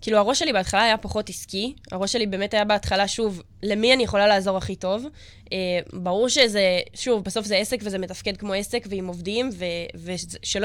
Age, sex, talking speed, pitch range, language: 10-29, female, 185 wpm, 190-230 Hz, Hebrew